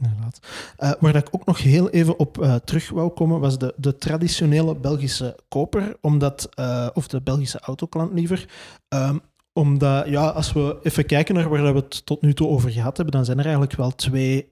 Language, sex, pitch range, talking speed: Dutch, male, 135-155 Hz, 200 wpm